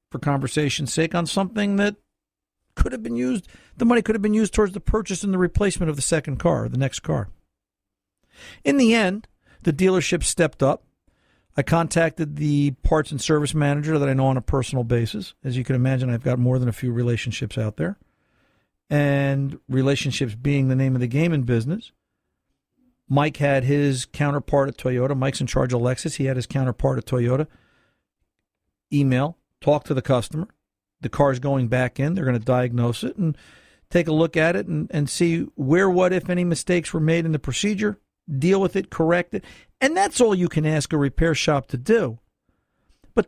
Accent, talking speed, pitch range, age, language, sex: American, 195 wpm, 130-185 Hz, 50-69, English, male